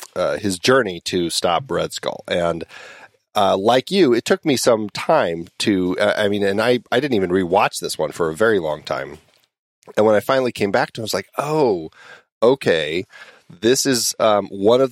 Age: 30-49